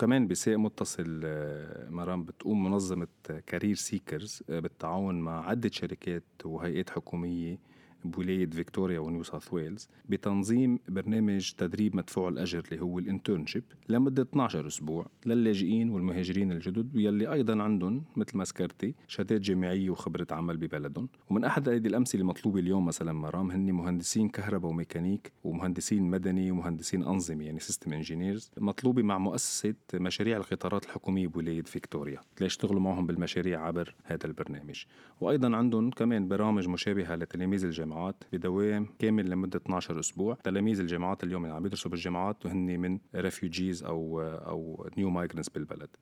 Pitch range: 85-105 Hz